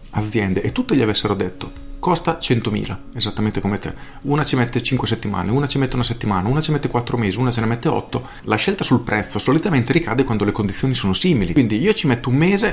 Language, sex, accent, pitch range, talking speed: Italian, male, native, 100-130 Hz, 225 wpm